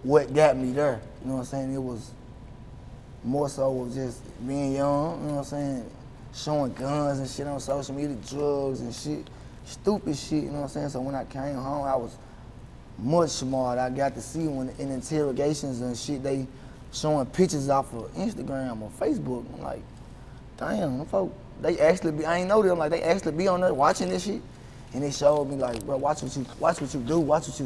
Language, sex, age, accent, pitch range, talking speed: English, male, 20-39, American, 125-145 Hz, 210 wpm